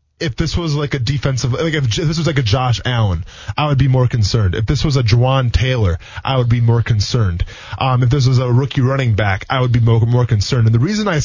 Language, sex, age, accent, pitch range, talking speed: English, male, 20-39, American, 120-150 Hz, 255 wpm